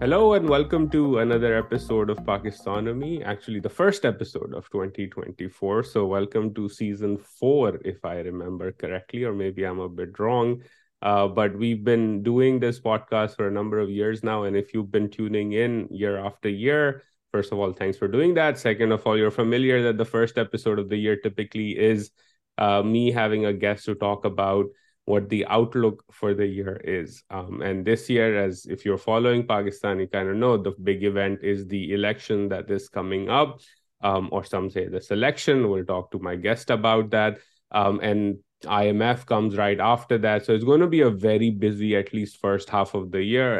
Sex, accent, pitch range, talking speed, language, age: male, Indian, 100-115 Hz, 200 wpm, English, 30-49